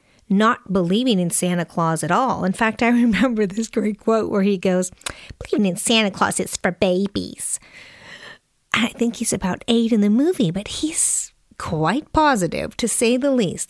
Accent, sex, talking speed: American, female, 175 wpm